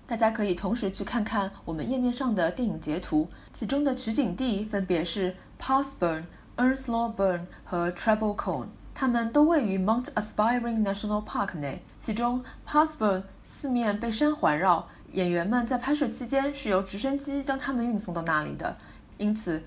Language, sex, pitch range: Chinese, female, 180-260 Hz